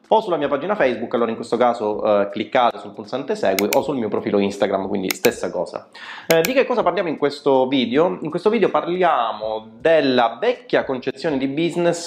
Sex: male